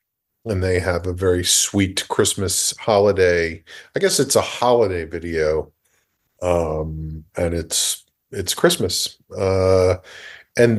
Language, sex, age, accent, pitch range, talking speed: English, male, 40-59, American, 95-120 Hz, 115 wpm